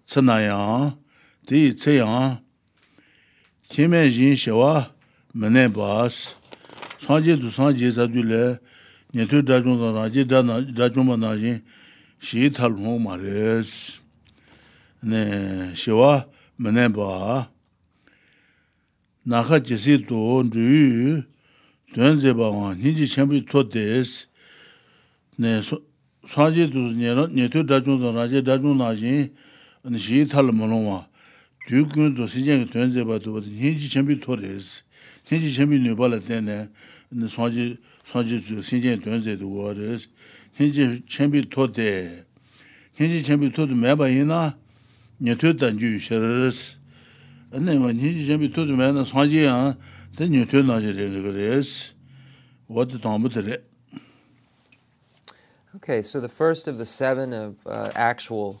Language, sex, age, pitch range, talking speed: English, male, 60-79, 110-140 Hz, 35 wpm